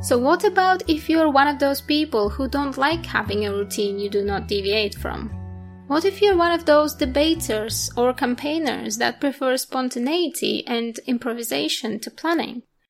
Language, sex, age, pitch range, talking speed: English, female, 20-39, 240-315 Hz, 170 wpm